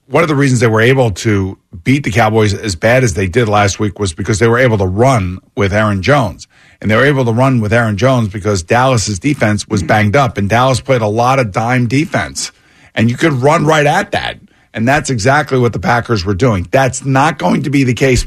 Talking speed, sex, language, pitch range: 240 wpm, male, English, 105-130 Hz